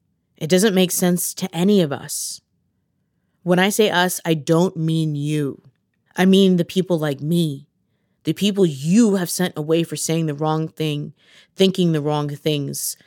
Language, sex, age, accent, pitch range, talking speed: English, female, 20-39, American, 145-175 Hz, 170 wpm